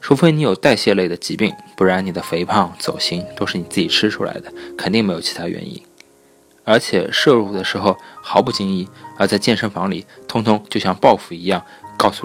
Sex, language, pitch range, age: male, Chinese, 95-110 Hz, 20-39